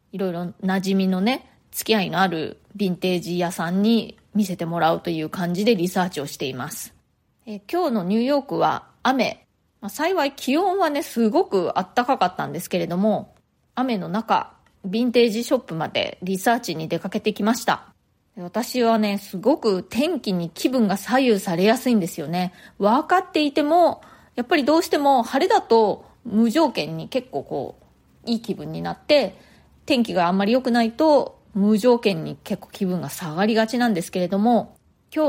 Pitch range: 185-245 Hz